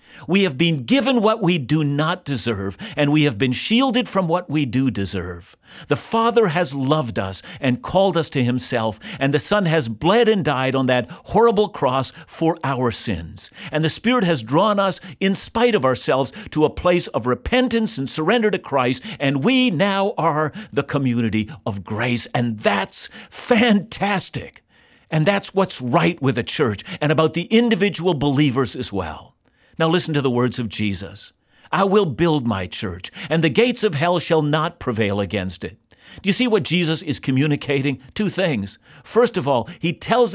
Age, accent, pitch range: 50-69, American, 125-195 Hz